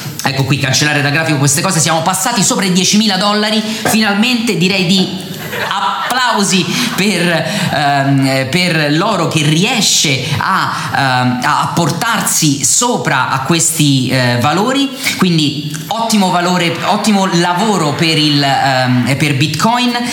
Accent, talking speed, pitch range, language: native, 110 wpm, 145-185 Hz, Italian